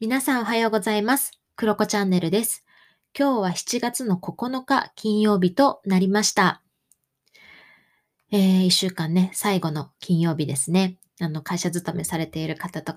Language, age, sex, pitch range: Japanese, 20-39, female, 170-220 Hz